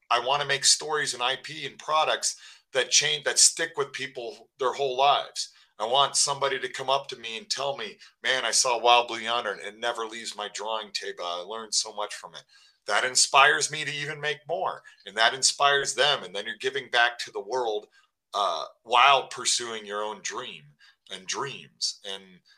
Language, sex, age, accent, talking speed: English, male, 40-59, American, 200 wpm